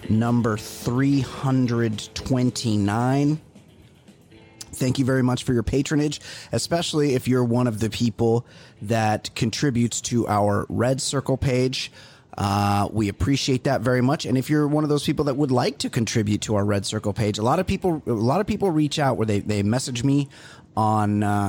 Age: 30-49